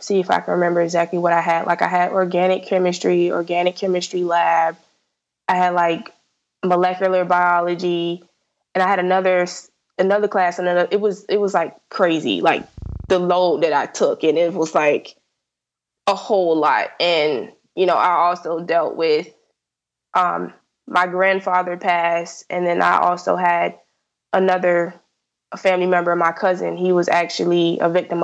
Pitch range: 170-185 Hz